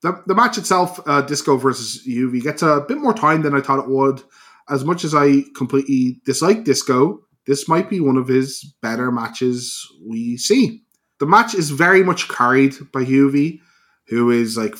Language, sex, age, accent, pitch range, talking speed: English, male, 20-39, Irish, 120-145 Hz, 185 wpm